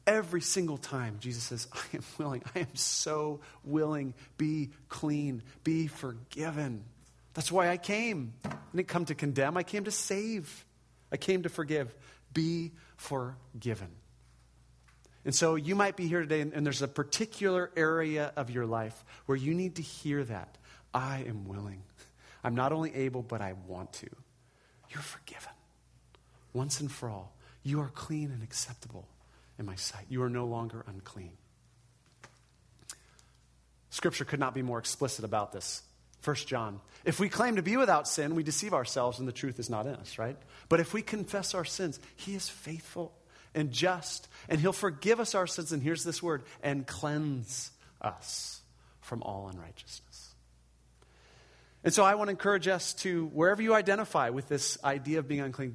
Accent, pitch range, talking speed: American, 120-165 Hz, 170 wpm